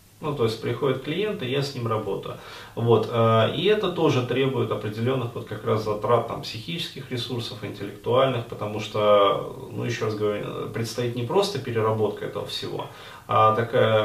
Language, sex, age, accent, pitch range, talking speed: Russian, male, 30-49, native, 110-130 Hz, 160 wpm